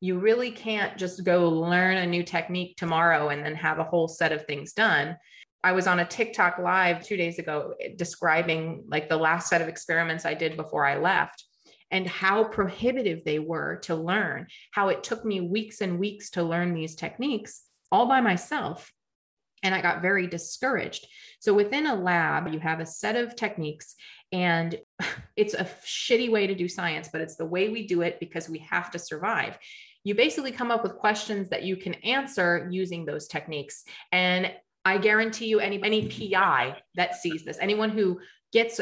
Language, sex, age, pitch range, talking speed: English, female, 30-49, 170-210 Hz, 190 wpm